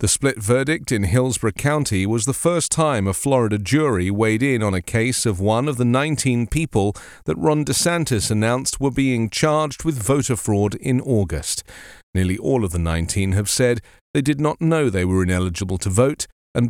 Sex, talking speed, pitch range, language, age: male, 190 wpm, 100-140 Hz, English, 40-59